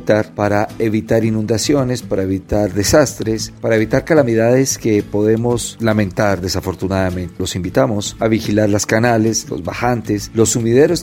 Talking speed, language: 125 wpm, Spanish